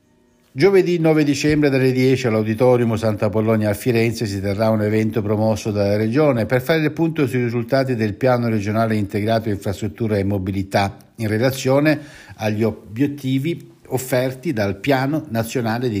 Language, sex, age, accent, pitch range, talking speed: Italian, male, 60-79, native, 95-130 Hz, 145 wpm